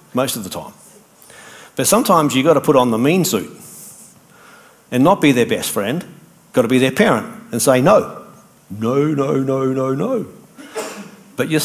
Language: English